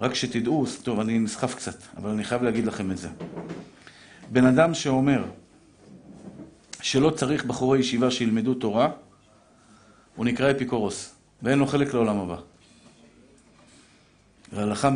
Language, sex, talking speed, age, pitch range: Hebrew, male, 125 wpm, 50-69, 115-145 Hz